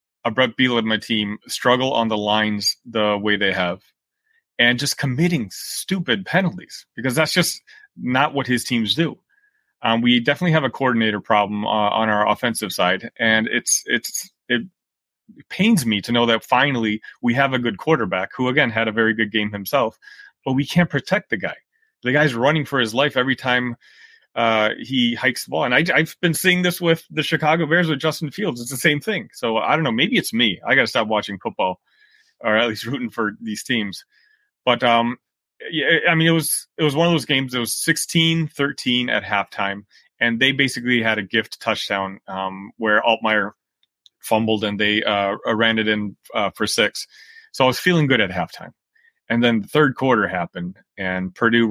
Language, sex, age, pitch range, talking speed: English, male, 30-49, 110-165 Hz, 200 wpm